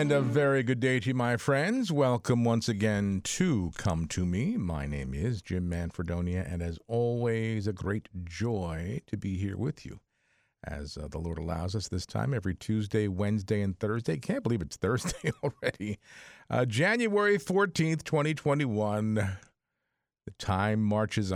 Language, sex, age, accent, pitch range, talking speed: English, male, 50-69, American, 90-120 Hz, 160 wpm